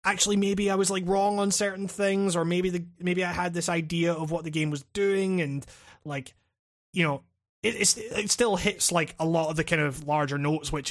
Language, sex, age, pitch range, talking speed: English, male, 20-39, 145-175 Hz, 230 wpm